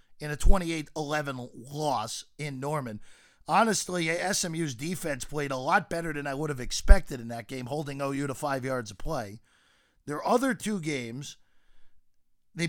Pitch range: 135-175 Hz